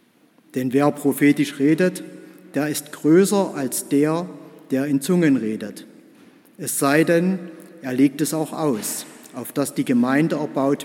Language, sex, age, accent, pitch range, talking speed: German, male, 50-69, German, 145-190 Hz, 145 wpm